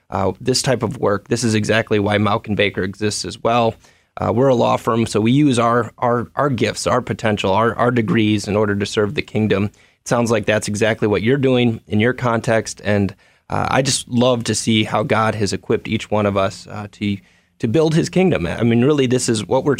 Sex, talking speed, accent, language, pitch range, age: male, 230 wpm, American, English, 105-125 Hz, 20-39